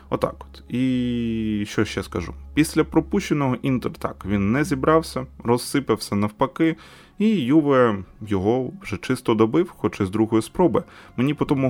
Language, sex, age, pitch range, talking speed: Ukrainian, male, 20-39, 95-120 Hz, 150 wpm